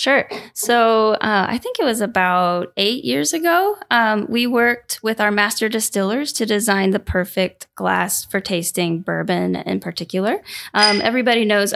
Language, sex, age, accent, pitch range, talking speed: English, female, 10-29, American, 175-220 Hz, 160 wpm